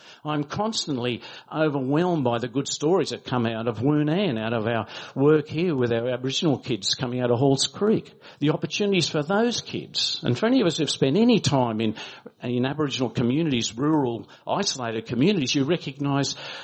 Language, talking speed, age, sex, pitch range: English, 175 wpm, 50-69, male, 120-160 Hz